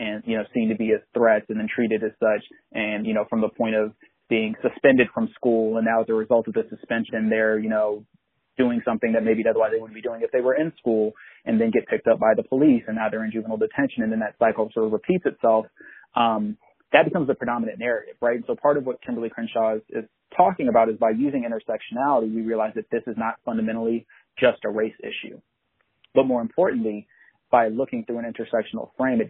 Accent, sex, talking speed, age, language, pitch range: American, male, 235 wpm, 30-49, English, 110-120 Hz